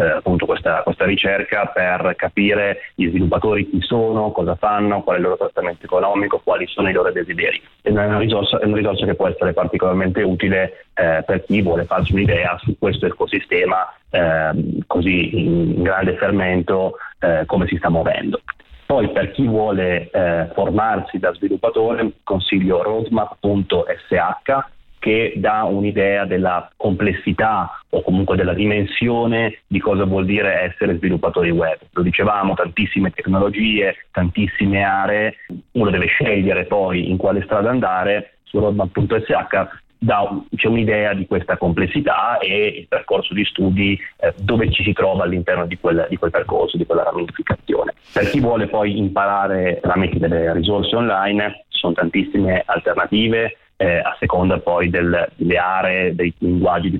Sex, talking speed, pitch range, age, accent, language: male, 150 wpm, 90-105 Hz, 30-49, native, Italian